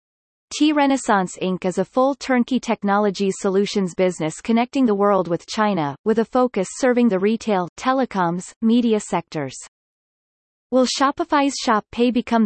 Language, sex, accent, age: English, female, American, 30-49